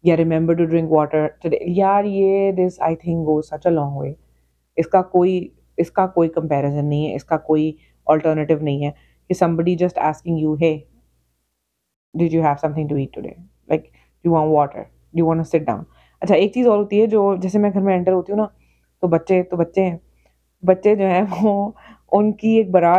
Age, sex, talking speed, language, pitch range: 30-49, female, 45 wpm, Urdu, 150-195 Hz